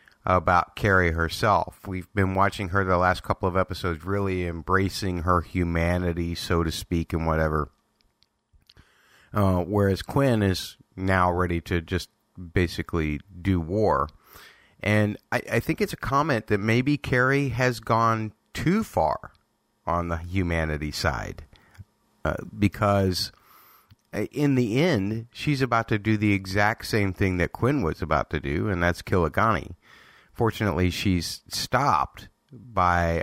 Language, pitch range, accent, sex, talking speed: English, 90-110 Hz, American, male, 140 wpm